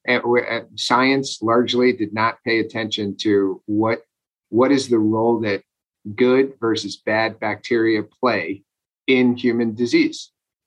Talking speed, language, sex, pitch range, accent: 125 wpm, English, male, 105-125 Hz, American